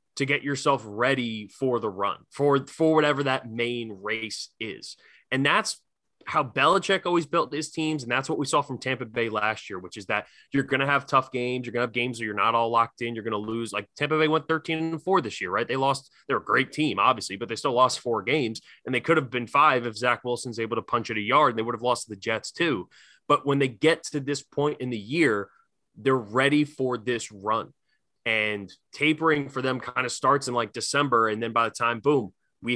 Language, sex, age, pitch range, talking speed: English, male, 20-39, 115-150 Hz, 245 wpm